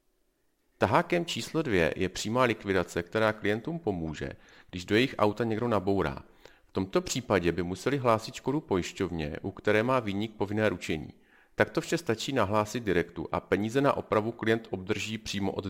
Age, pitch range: 40-59, 95-115 Hz